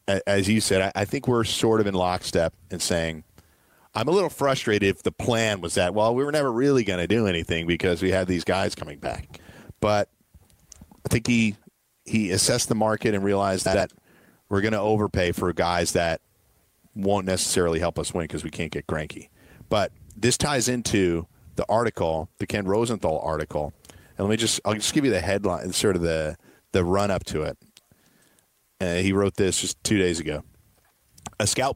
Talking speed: 195 wpm